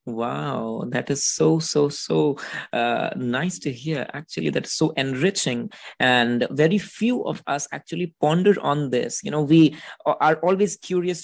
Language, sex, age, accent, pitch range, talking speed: English, male, 20-39, Indian, 140-175 Hz, 155 wpm